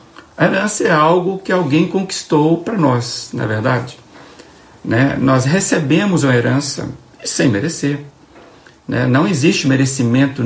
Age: 60-79